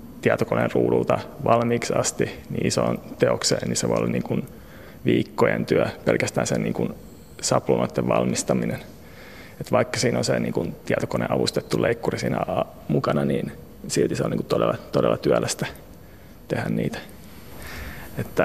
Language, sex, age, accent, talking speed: Finnish, male, 30-49, native, 145 wpm